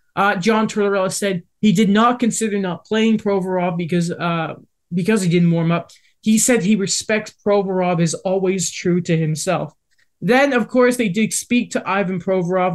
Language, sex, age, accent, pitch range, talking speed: English, male, 20-39, American, 175-220 Hz, 175 wpm